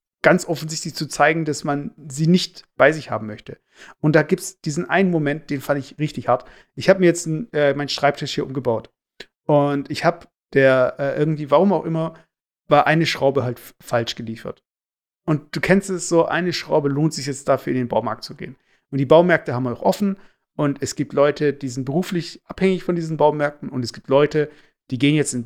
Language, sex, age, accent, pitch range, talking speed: German, male, 50-69, German, 135-160 Hz, 220 wpm